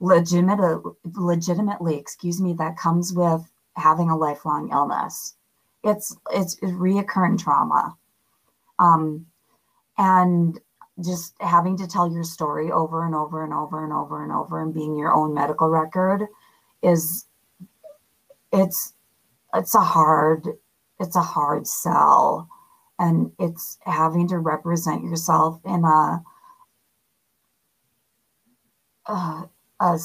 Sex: female